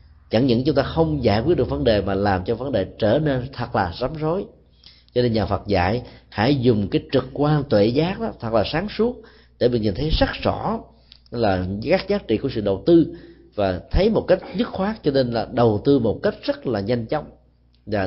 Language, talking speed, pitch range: Vietnamese, 235 wpm, 95-140 Hz